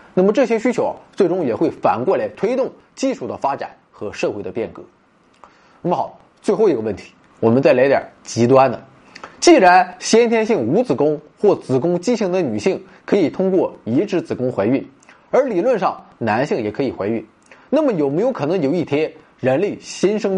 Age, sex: 20-39, male